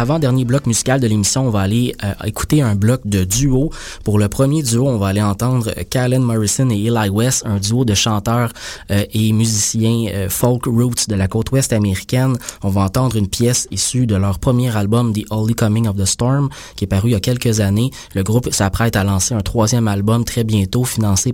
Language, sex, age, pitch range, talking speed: French, male, 20-39, 100-120 Hz, 220 wpm